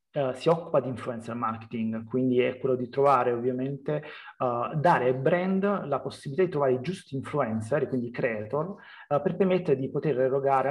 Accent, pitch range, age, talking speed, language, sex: native, 125-145 Hz, 30-49, 175 wpm, Italian, male